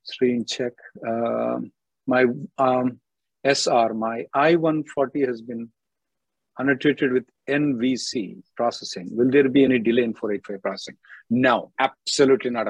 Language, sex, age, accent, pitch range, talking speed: English, male, 50-69, Indian, 125-165 Hz, 130 wpm